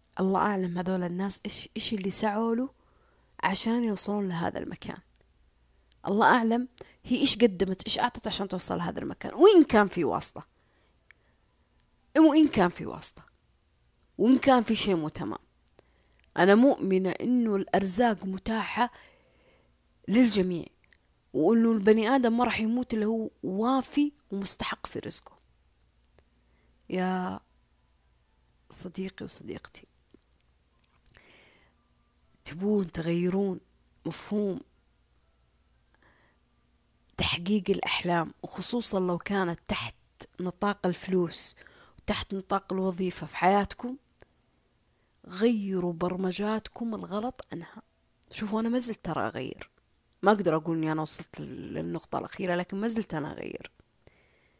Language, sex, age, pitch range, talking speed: Arabic, female, 20-39, 165-220 Hz, 105 wpm